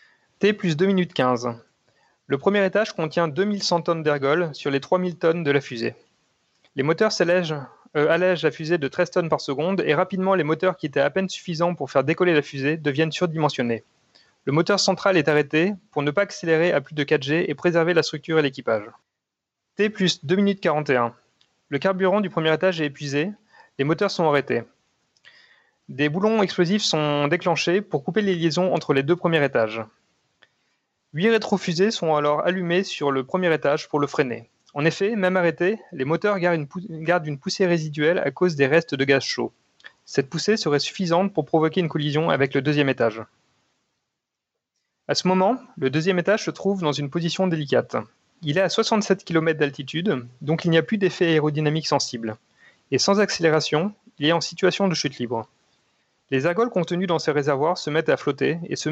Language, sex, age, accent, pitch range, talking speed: French, male, 30-49, French, 145-185 Hz, 185 wpm